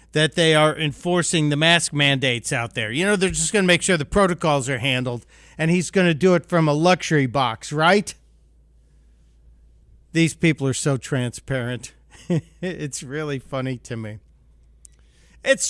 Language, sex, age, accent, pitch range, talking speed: English, male, 50-69, American, 135-175 Hz, 165 wpm